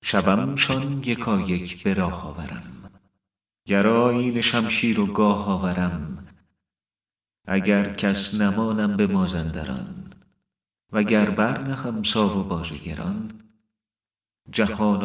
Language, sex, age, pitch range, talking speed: Persian, male, 40-59, 95-115 Hz, 85 wpm